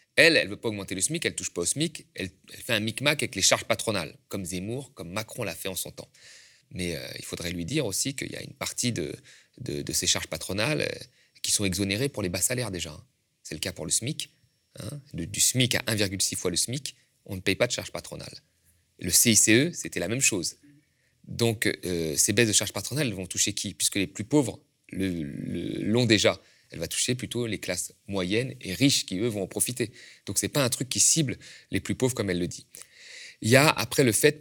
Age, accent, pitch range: 30-49, French, 95-125 Hz